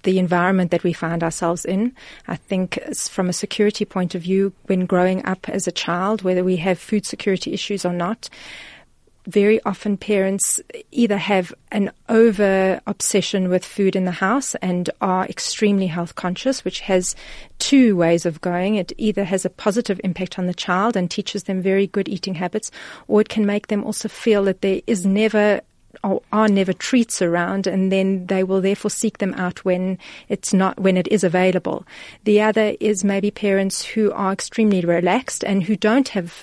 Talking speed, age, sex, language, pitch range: 185 wpm, 30-49, female, English, 185-215 Hz